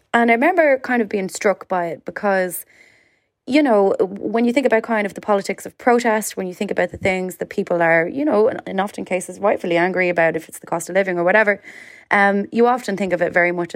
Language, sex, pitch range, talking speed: English, female, 170-215 Hz, 240 wpm